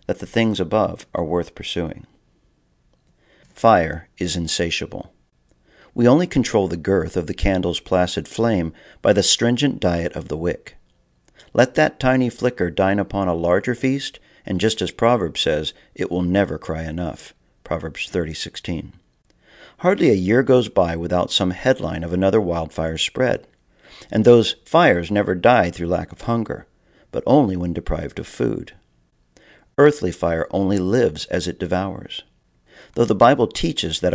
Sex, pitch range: male, 85-110 Hz